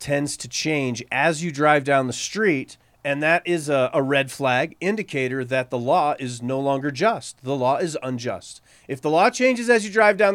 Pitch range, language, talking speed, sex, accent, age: 130-195 Hz, English, 210 wpm, male, American, 30-49